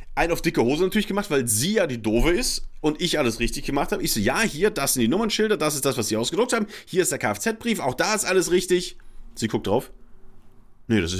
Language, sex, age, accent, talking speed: German, male, 30-49, German, 255 wpm